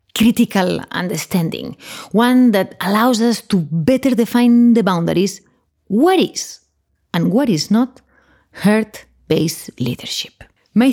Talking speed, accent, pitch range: 110 wpm, Spanish, 180-240 Hz